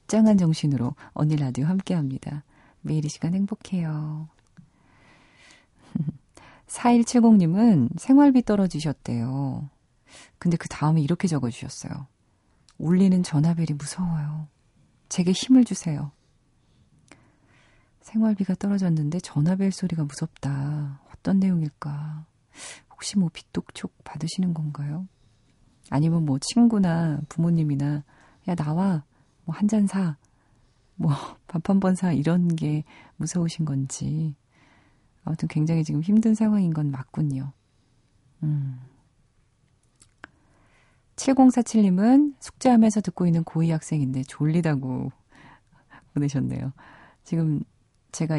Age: 40-59